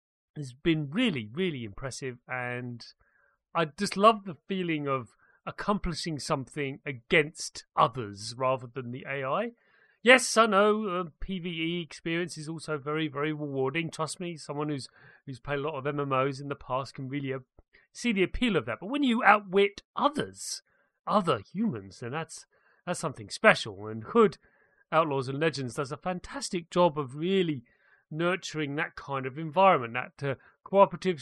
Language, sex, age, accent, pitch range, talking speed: English, male, 30-49, British, 140-185 Hz, 160 wpm